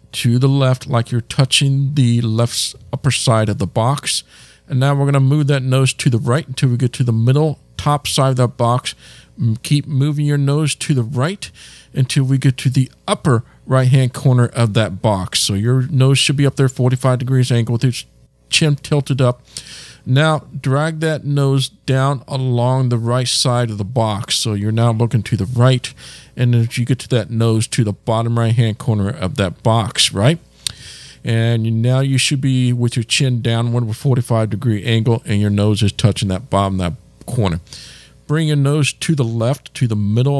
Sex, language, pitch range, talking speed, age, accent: male, English, 115-135 Hz, 200 wpm, 50-69, American